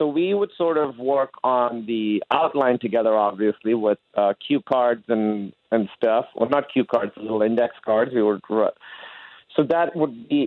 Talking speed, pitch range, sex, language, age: 180 wpm, 115-145 Hz, male, English, 40-59